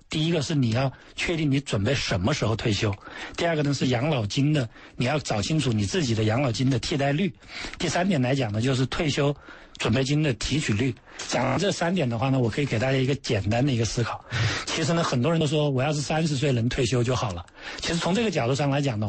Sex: male